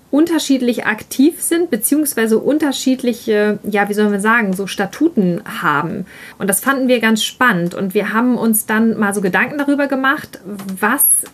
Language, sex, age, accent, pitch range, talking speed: German, female, 30-49, German, 200-250 Hz, 160 wpm